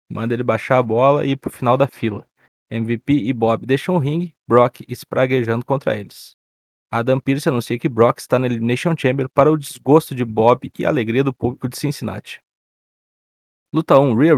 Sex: male